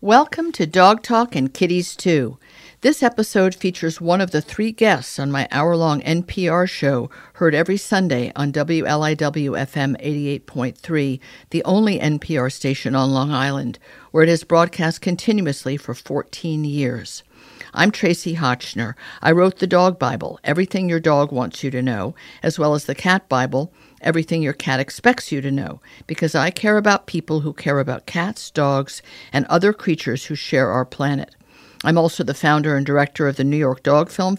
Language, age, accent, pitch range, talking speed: English, 50-69, American, 140-175 Hz, 170 wpm